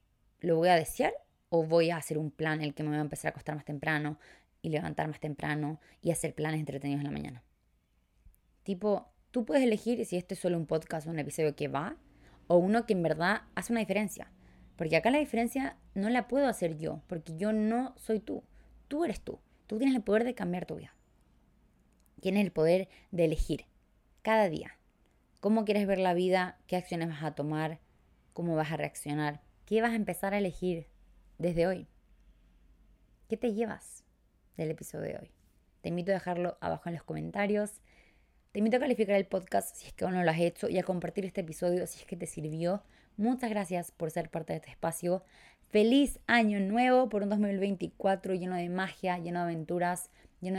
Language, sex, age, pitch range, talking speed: Spanish, female, 20-39, 155-205 Hz, 200 wpm